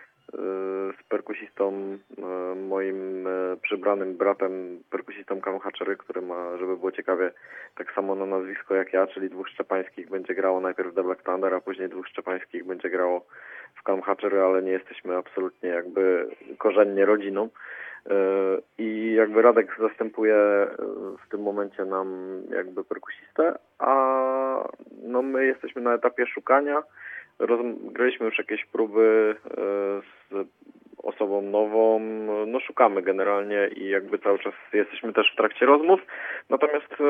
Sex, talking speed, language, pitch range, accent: male, 130 wpm, Polish, 95-110 Hz, native